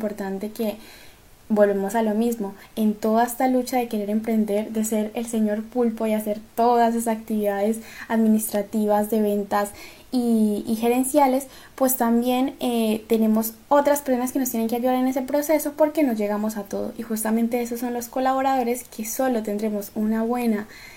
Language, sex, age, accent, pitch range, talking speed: Spanish, female, 10-29, Colombian, 210-245 Hz, 170 wpm